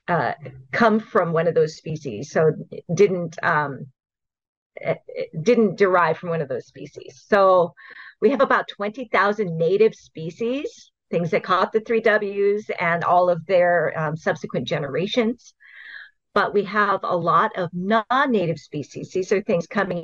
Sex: female